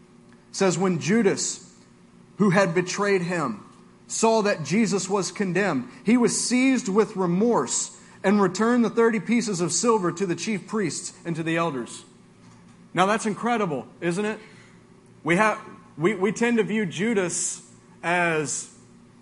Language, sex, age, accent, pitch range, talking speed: English, male, 30-49, American, 180-230 Hz, 145 wpm